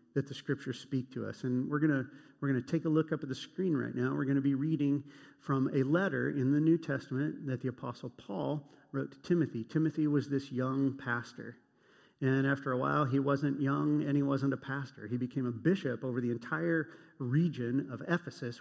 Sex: male